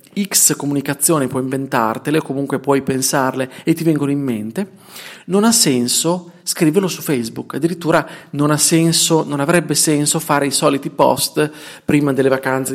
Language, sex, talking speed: Italian, male, 155 wpm